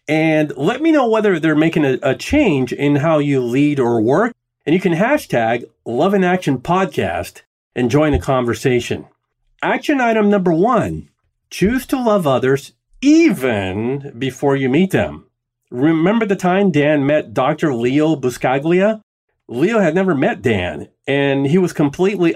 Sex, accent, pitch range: male, American, 125-180 Hz